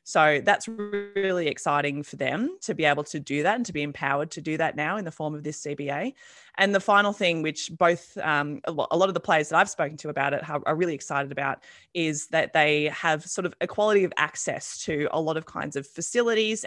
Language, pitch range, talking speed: English, 155-195 Hz, 230 wpm